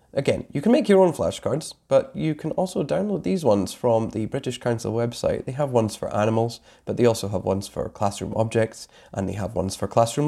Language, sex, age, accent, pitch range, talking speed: English, male, 20-39, British, 100-125 Hz, 220 wpm